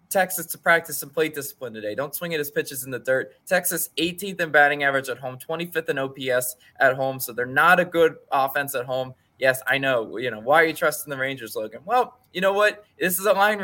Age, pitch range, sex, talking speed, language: 20-39, 135-175 Hz, male, 240 wpm, English